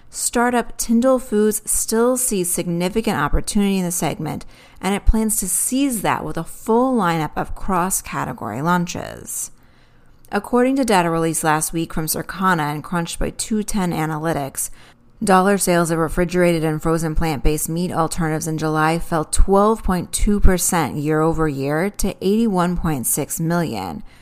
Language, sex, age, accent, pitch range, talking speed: English, female, 30-49, American, 160-210 Hz, 135 wpm